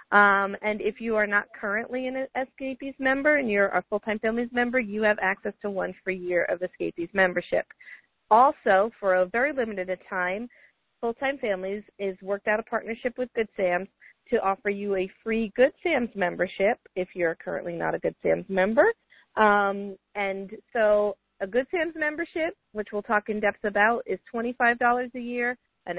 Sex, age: female, 40-59